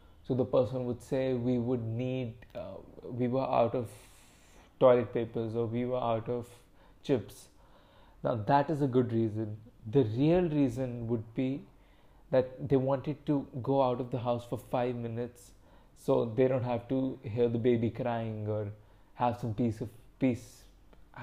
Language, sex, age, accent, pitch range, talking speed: English, male, 20-39, Indian, 120-140 Hz, 165 wpm